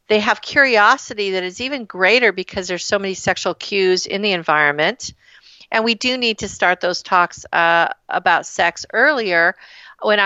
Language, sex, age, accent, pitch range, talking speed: English, female, 50-69, American, 180-225 Hz, 170 wpm